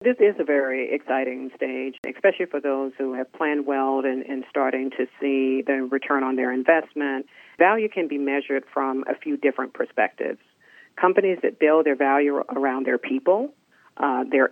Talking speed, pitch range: 170 wpm, 135-155 Hz